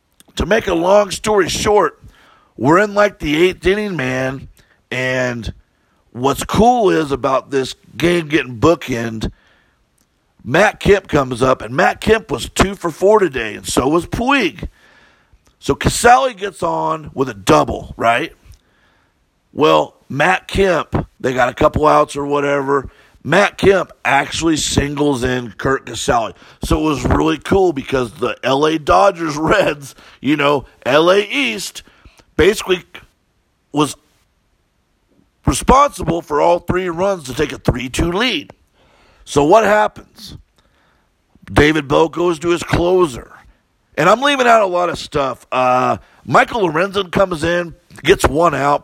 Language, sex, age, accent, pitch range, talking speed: English, male, 50-69, American, 130-185 Hz, 140 wpm